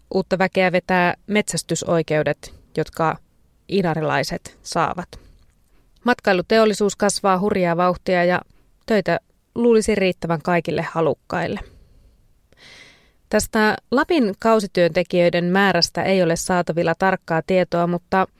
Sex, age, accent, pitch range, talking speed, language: female, 20-39, native, 170-195 Hz, 90 wpm, Finnish